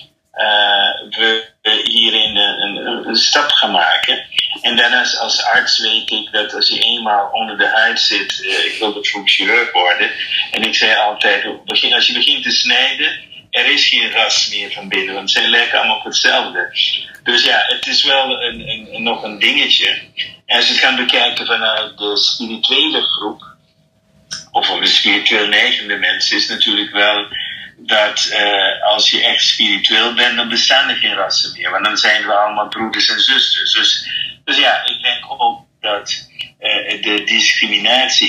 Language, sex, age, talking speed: Dutch, male, 50-69, 180 wpm